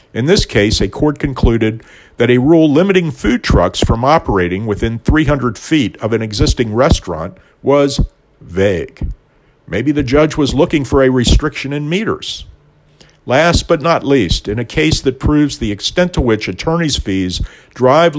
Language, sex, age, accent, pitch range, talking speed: English, male, 50-69, American, 100-145 Hz, 160 wpm